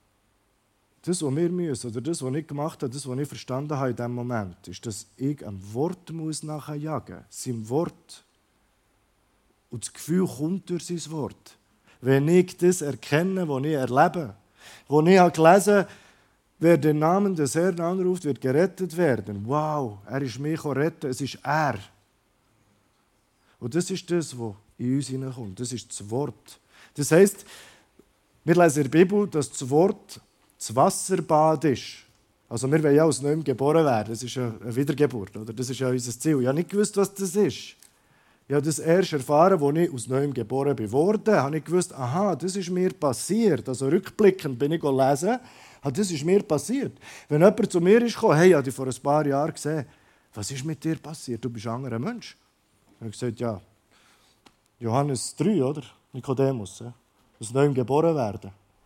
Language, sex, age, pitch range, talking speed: German, male, 50-69, 120-165 Hz, 185 wpm